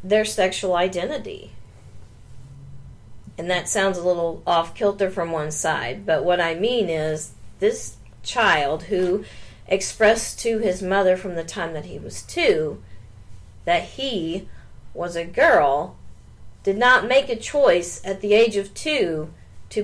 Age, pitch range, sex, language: 40-59, 150-195 Hz, female, English